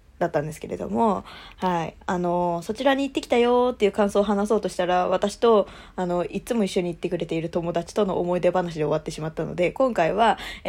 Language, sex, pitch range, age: Japanese, female, 175-255 Hz, 20-39